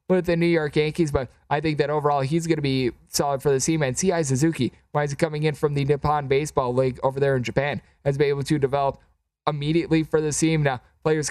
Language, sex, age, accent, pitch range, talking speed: English, male, 20-39, American, 140-165 Hz, 245 wpm